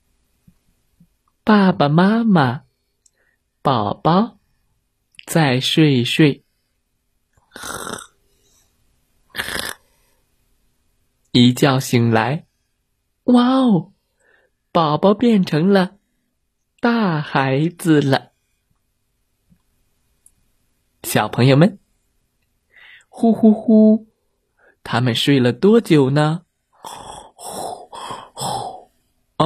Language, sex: Chinese, male